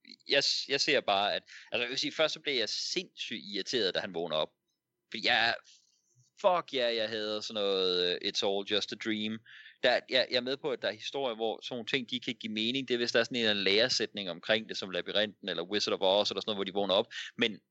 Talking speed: 260 wpm